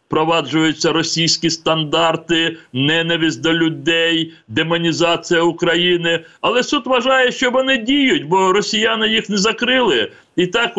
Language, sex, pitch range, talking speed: Ukrainian, male, 145-175 Hz, 115 wpm